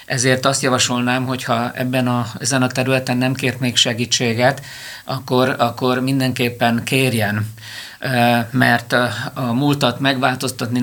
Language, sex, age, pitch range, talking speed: Hungarian, male, 50-69, 120-130 Hz, 115 wpm